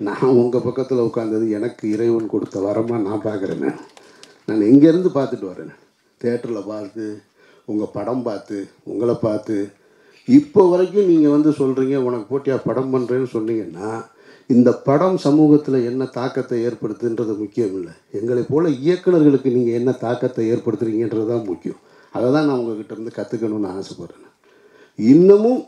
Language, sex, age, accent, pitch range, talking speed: Tamil, male, 50-69, native, 115-140 Hz, 125 wpm